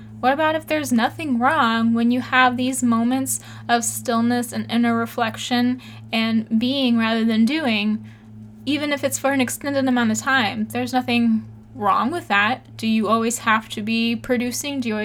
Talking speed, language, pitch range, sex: 175 wpm, English, 215-250 Hz, female